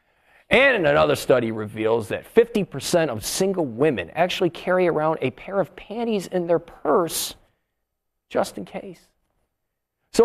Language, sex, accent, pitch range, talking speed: English, male, American, 120-190 Hz, 135 wpm